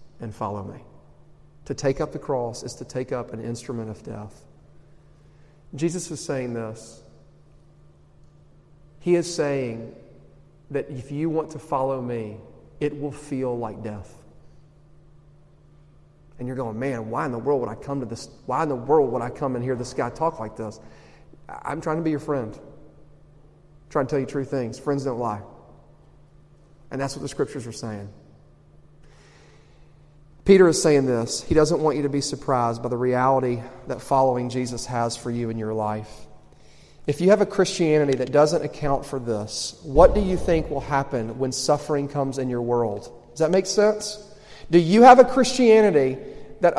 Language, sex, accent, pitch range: English, male, American, 125-165 Hz